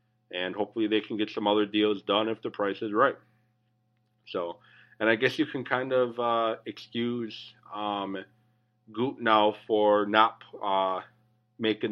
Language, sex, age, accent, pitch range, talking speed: English, male, 30-49, American, 100-120 Hz, 155 wpm